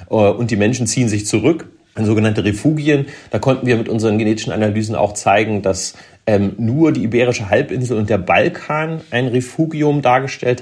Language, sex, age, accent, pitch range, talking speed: German, male, 30-49, German, 100-125 Hz, 170 wpm